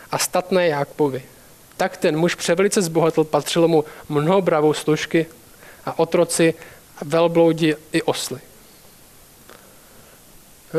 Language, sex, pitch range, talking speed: Czech, male, 165-225 Hz, 105 wpm